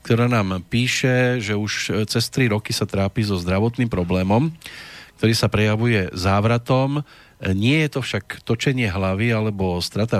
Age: 40-59